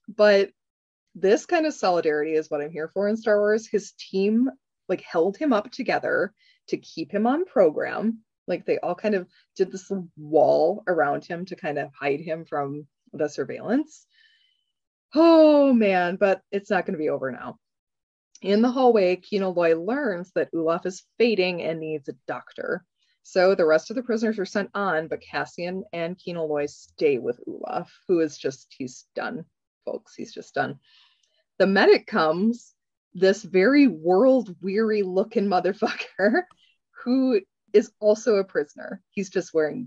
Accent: American